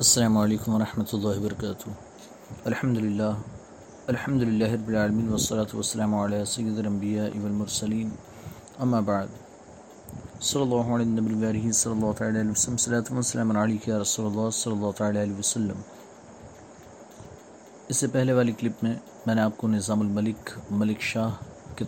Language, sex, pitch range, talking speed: Urdu, male, 110-125 Hz, 120 wpm